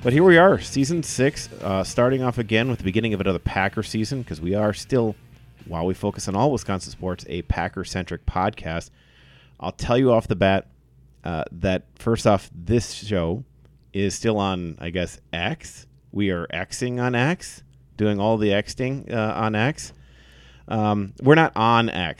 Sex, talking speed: male, 180 wpm